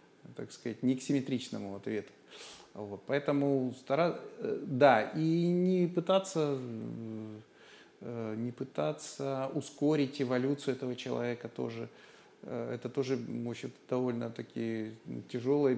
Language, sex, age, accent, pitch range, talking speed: Russian, male, 30-49, native, 115-160 Hz, 95 wpm